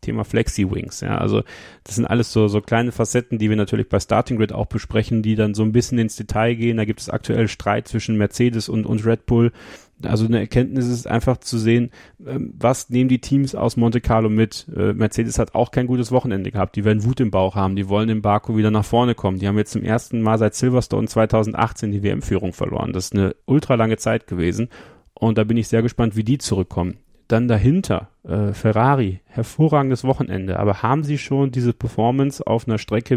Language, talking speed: German, 210 wpm